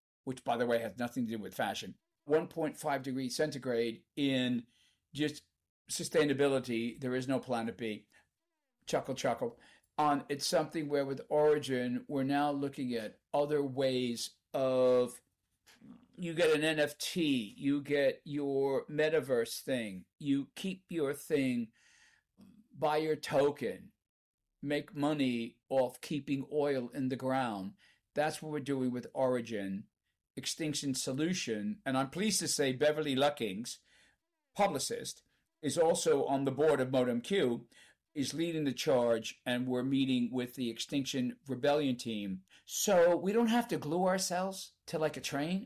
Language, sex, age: English, male, 50-69